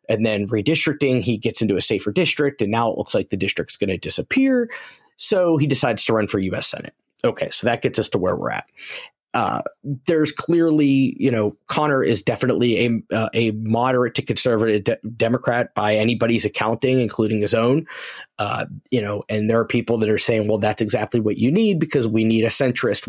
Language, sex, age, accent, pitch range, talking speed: English, male, 30-49, American, 110-130 Hz, 205 wpm